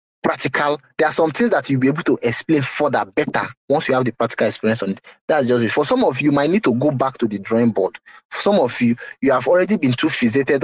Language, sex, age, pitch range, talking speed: English, male, 30-49, 120-155 Hz, 270 wpm